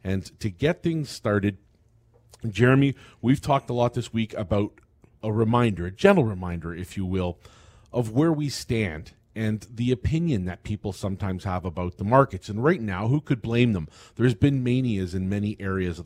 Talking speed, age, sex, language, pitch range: 185 wpm, 40-59, male, English, 95-120 Hz